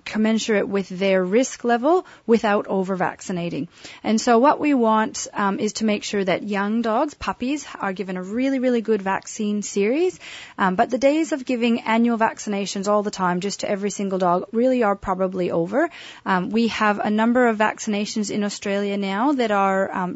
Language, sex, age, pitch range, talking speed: English, female, 30-49, 190-235 Hz, 190 wpm